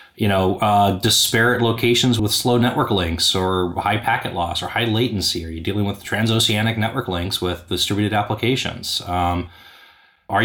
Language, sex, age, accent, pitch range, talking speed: English, male, 20-39, American, 95-120 Hz, 160 wpm